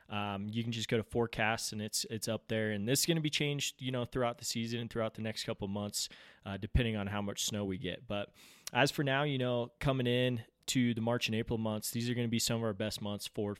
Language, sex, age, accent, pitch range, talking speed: English, male, 20-39, American, 110-130 Hz, 275 wpm